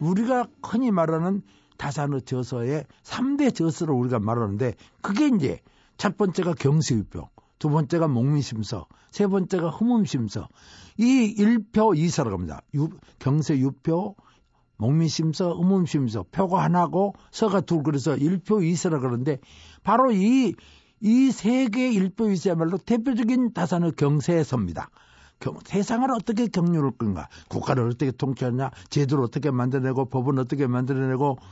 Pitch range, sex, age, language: 135-185 Hz, male, 60-79, Korean